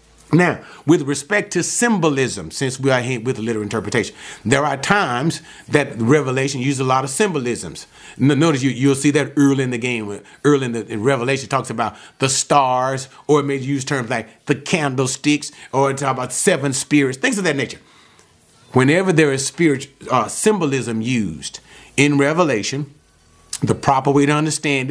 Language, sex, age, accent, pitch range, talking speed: English, male, 40-59, American, 120-160 Hz, 175 wpm